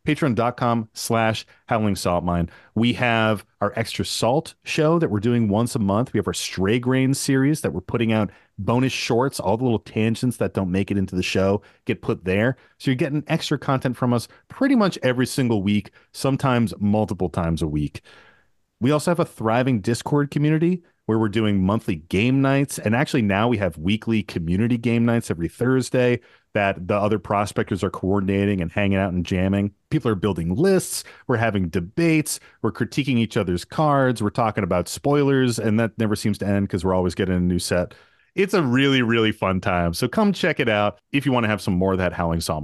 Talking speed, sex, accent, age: 205 wpm, male, American, 30-49